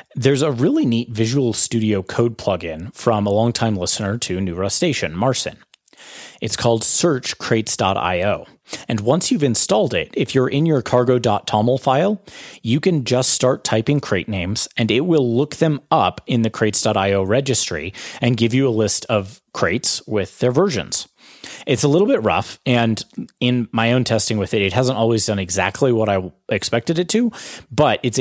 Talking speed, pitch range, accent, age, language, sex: 175 wpm, 100-125 Hz, American, 30-49, English, male